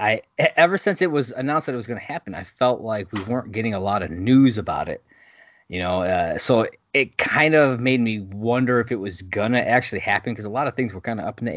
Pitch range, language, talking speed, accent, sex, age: 100-130 Hz, English, 265 wpm, American, male, 30-49